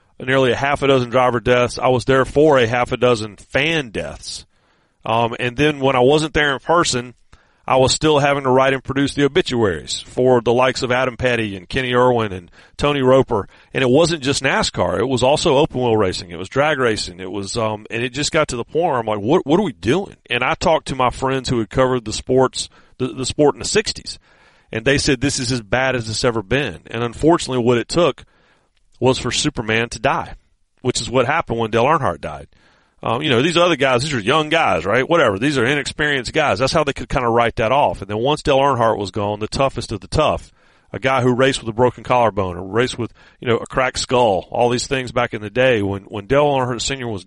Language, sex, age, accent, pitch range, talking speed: English, male, 40-59, American, 115-140 Hz, 245 wpm